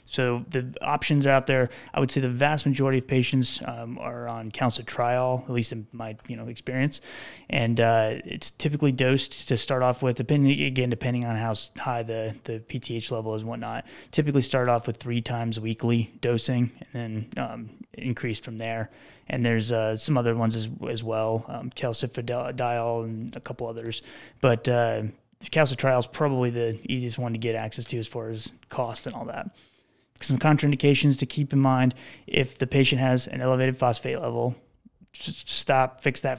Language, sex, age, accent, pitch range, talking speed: English, male, 20-39, American, 115-135 Hz, 185 wpm